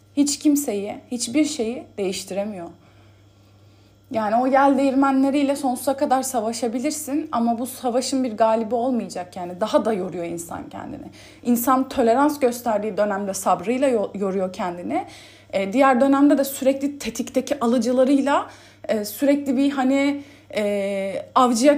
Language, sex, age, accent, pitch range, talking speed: Turkish, female, 30-49, native, 210-280 Hz, 120 wpm